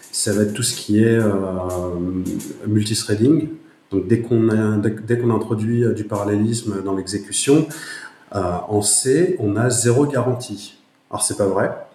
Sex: male